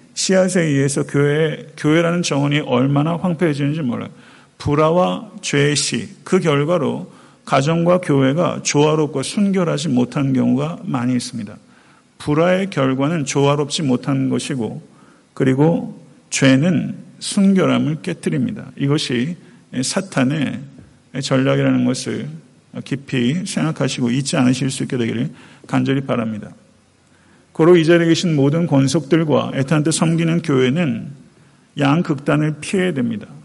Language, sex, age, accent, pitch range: Korean, male, 50-69, native, 135-170 Hz